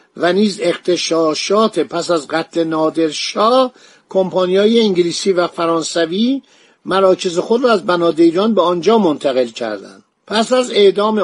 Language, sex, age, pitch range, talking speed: Persian, male, 50-69, 165-210 Hz, 130 wpm